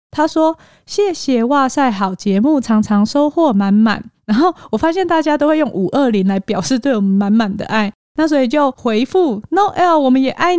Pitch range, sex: 210-295 Hz, female